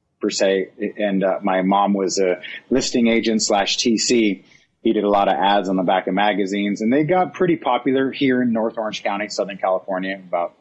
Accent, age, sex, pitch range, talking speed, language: American, 30-49, male, 100-120 Hz, 205 wpm, English